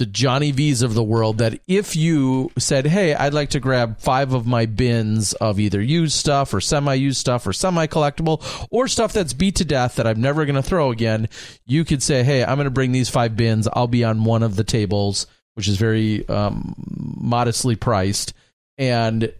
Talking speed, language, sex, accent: 205 wpm, English, male, American